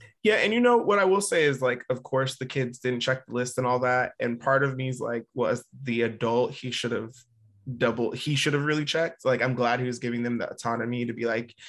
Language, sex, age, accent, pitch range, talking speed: English, male, 20-39, American, 120-135 Hz, 260 wpm